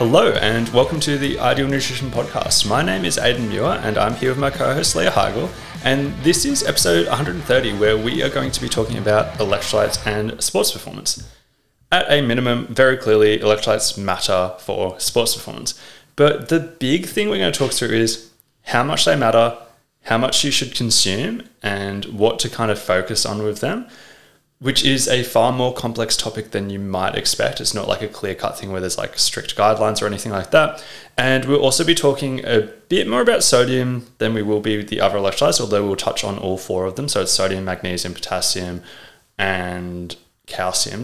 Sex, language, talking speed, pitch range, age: male, English, 200 wpm, 100-135 Hz, 20-39